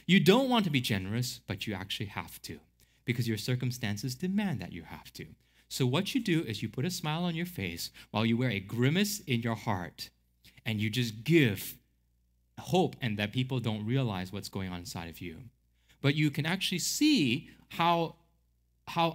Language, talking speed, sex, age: English, 195 wpm, male, 20-39